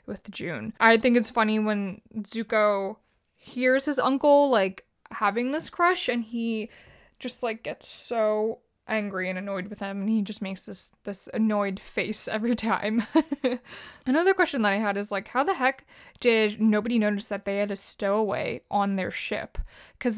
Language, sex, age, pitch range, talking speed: English, female, 20-39, 200-245 Hz, 170 wpm